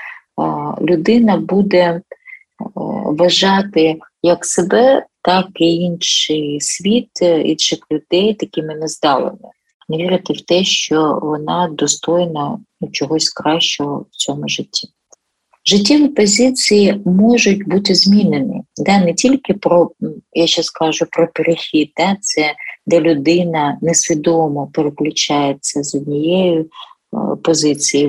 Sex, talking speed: female, 105 wpm